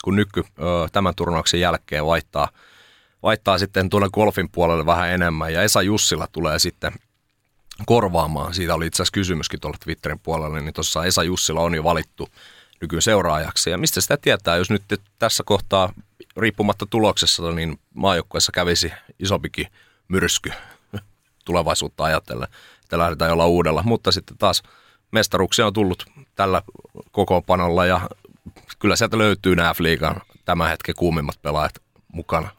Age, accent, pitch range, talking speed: 30-49, native, 85-100 Hz, 140 wpm